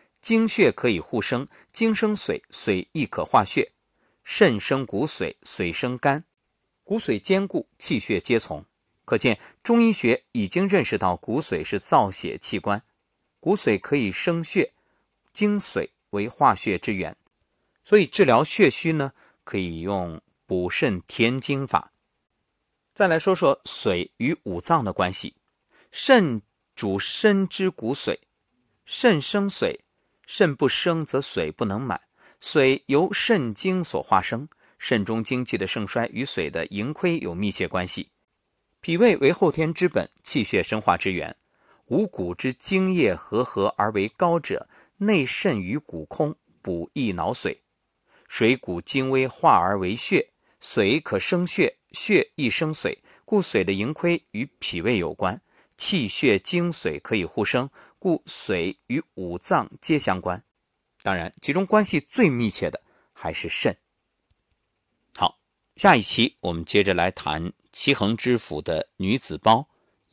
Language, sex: Chinese, male